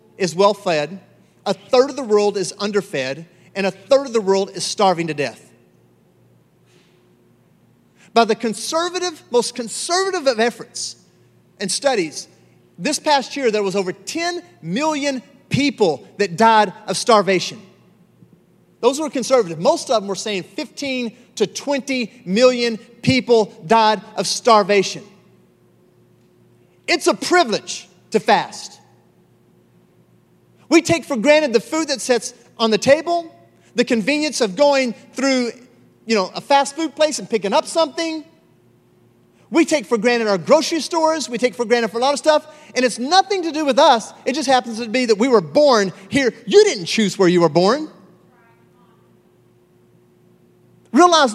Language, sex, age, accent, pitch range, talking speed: English, male, 40-59, American, 195-280 Hz, 150 wpm